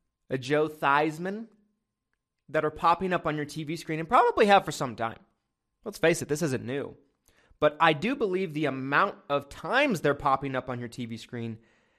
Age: 30-49